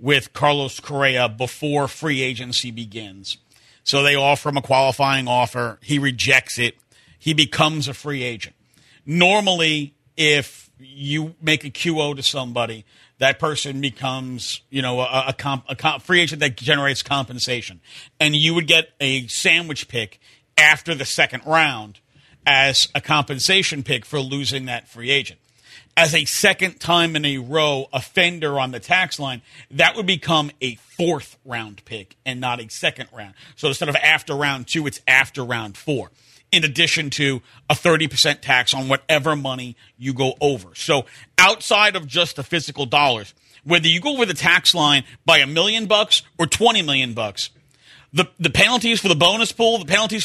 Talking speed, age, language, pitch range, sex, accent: 170 wpm, 50-69, English, 130-160 Hz, male, American